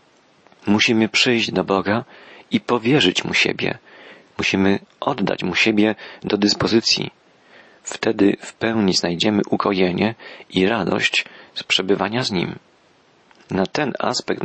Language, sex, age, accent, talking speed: Polish, male, 40-59, native, 115 wpm